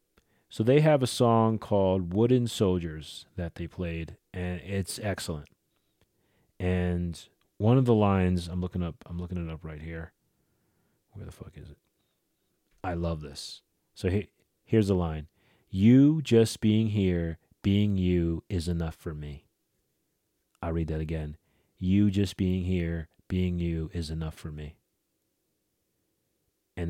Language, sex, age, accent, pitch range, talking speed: English, male, 40-59, American, 80-100 Hz, 145 wpm